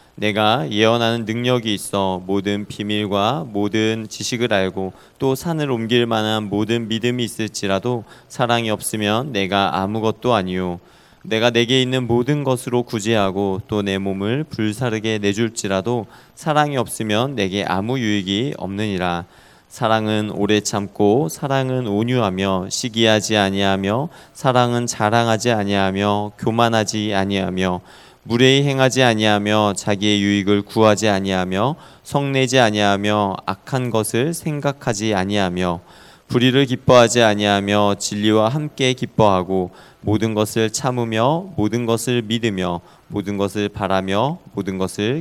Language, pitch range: Korean, 100-120 Hz